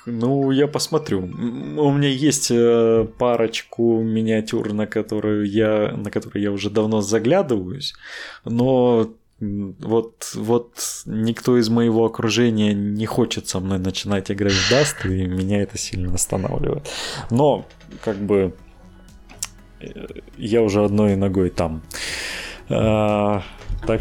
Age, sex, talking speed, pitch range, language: 20-39, male, 110 wpm, 95-115 Hz, Russian